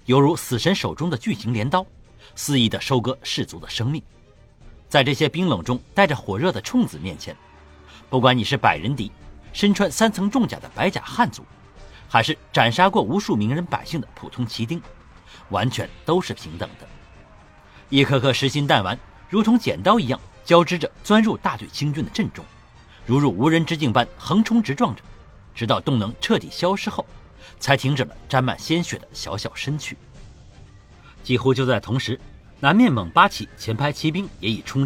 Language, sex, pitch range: Chinese, male, 115-160 Hz